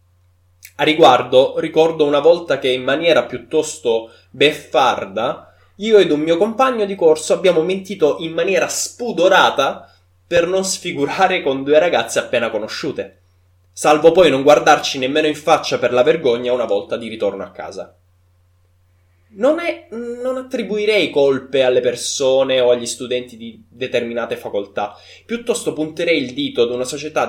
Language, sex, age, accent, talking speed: Italian, male, 20-39, native, 145 wpm